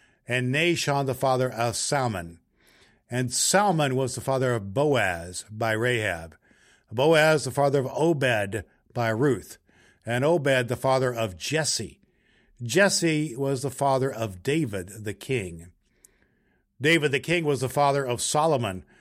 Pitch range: 120-150 Hz